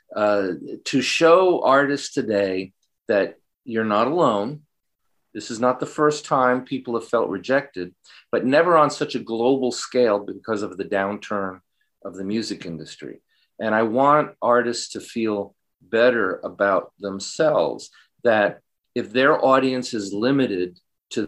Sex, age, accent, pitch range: male, 50-69, American, 105-140 Hz